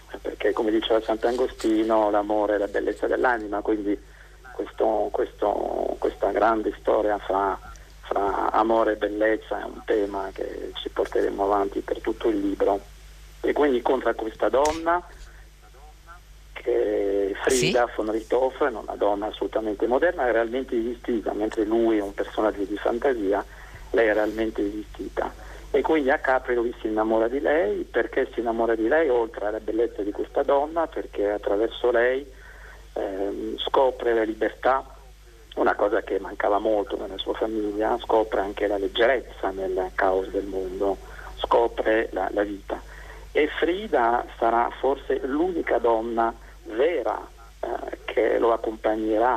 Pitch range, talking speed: 105-155 Hz, 145 wpm